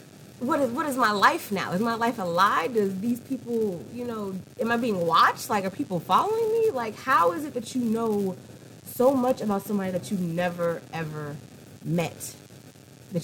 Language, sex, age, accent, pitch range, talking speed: English, female, 30-49, American, 165-265 Hz, 195 wpm